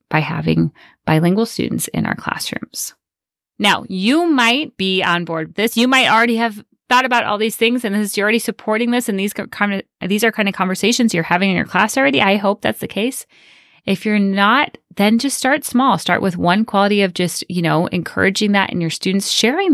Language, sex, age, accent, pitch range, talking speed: English, female, 30-49, American, 155-210 Hz, 215 wpm